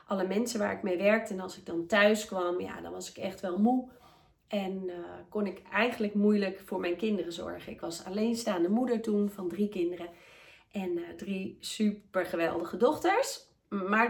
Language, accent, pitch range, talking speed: Dutch, Dutch, 180-235 Hz, 185 wpm